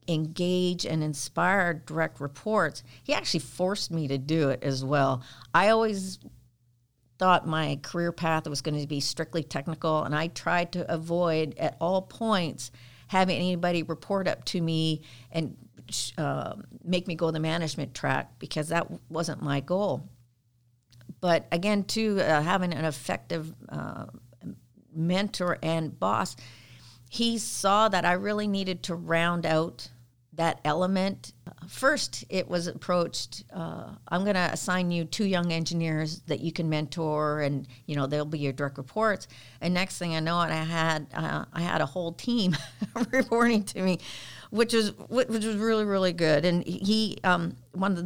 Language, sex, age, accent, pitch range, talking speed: English, female, 50-69, American, 150-185 Hz, 160 wpm